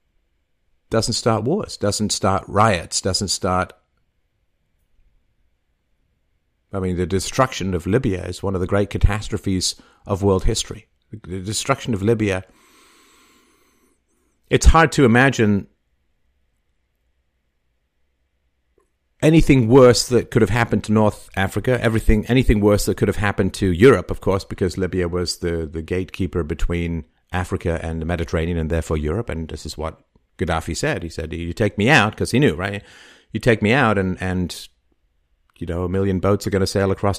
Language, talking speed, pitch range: English, 155 wpm, 80-110 Hz